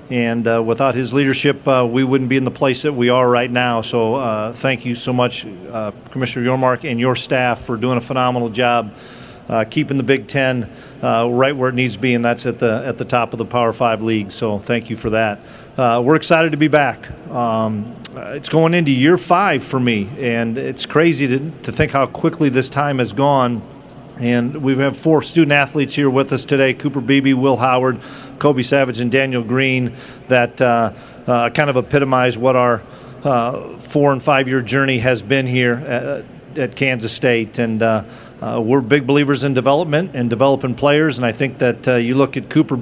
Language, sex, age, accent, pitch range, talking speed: English, male, 40-59, American, 120-140 Hz, 210 wpm